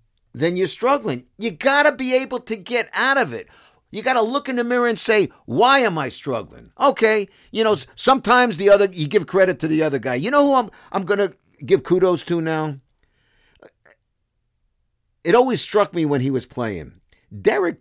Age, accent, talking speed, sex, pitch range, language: 50-69, American, 190 wpm, male, 125-205 Hz, English